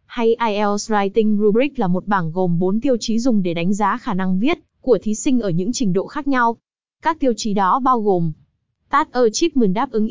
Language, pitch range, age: English, 205-250 Hz, 20-39